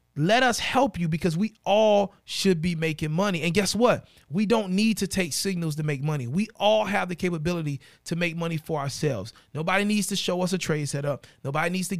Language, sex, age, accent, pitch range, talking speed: English, male, 30-49, American, 160-230 Hz, 220 wpm